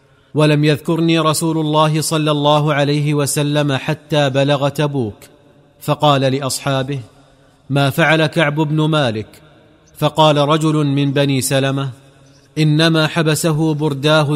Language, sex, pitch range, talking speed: Arabic, male, 140-155 Hz, 110 wpm